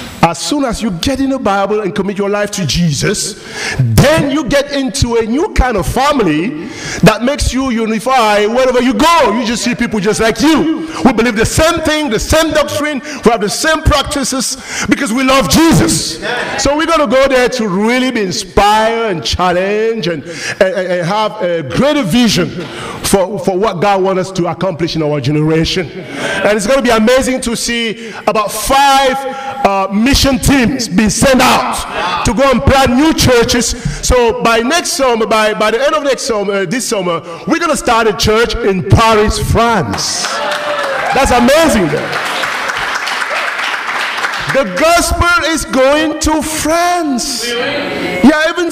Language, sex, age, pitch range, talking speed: English, male, 50-69, 205-275 Hz, 165 wpm